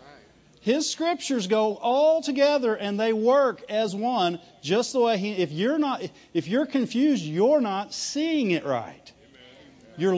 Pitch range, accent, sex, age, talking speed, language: 175-250 Hz, American, male, 40-59, 155 wpm, English